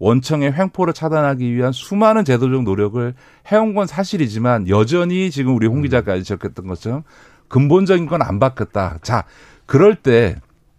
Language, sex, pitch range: Korean, male, 115-170 Hz